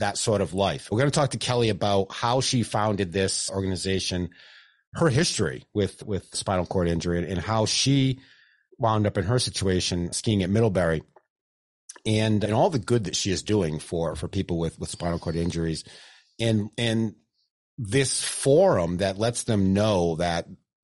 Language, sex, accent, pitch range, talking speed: English, male, American, 95-120 Hz, 175 wpm